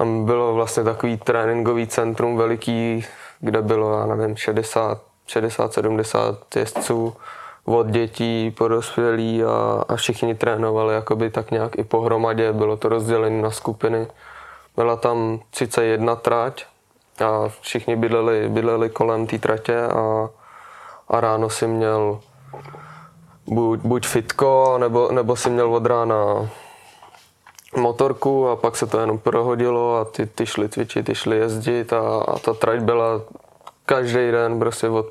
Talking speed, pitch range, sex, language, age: 130 wpm, 110-115 Hz, male, Czech, 20-39